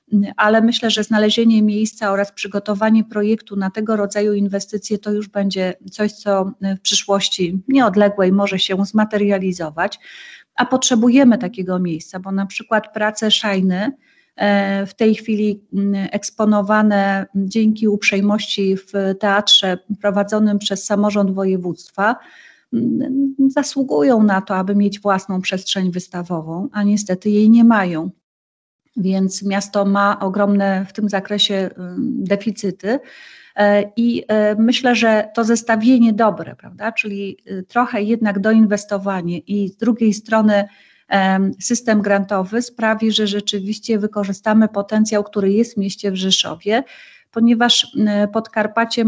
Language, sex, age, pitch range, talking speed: Polish, female, 30-49, 195-220 Hz, 115 wpm